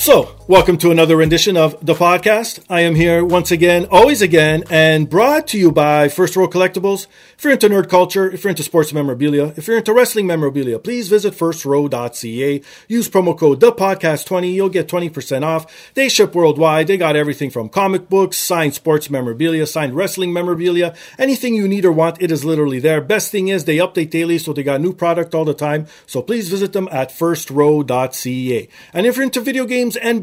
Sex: male